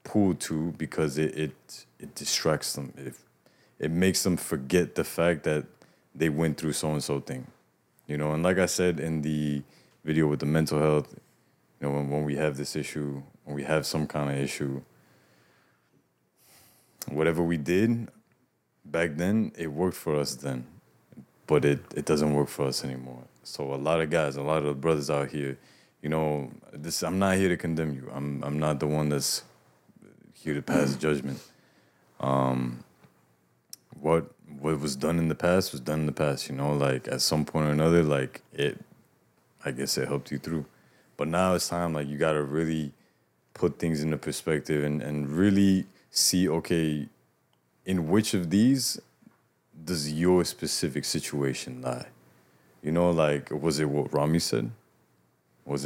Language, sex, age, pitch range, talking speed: English, male, 20-39, 70-80 Hz, 175 wpm